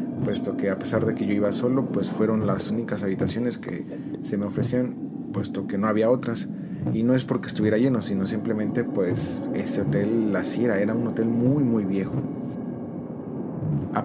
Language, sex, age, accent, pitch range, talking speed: Spanish, male, 40-59, Mexican, 100-125 Hz, 185 wpm